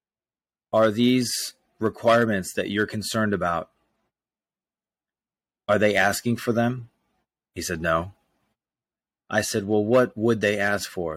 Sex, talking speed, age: male, 125 wpm, 30-49